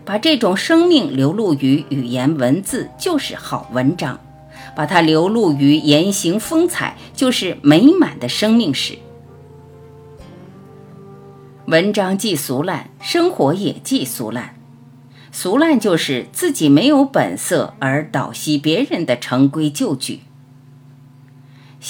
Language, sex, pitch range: Chinese, female, 135-220 Hz